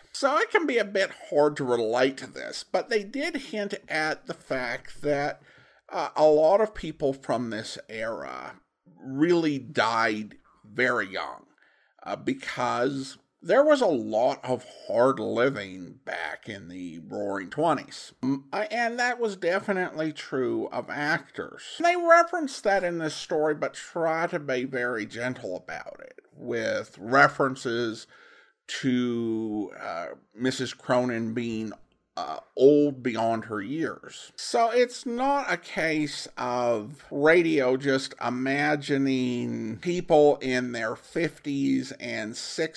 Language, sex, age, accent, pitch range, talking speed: English, male, 50-69, American, 125-185 Hz, 130 wpm